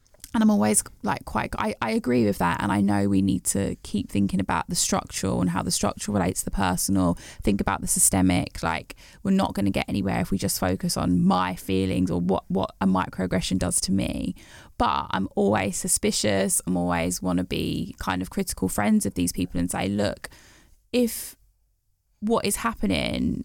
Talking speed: 195 wpm